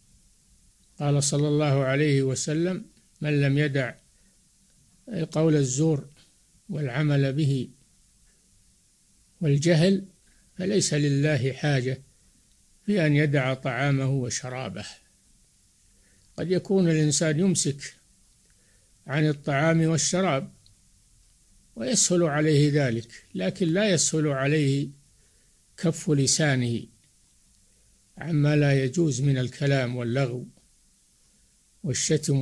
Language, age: Arabic, 60-79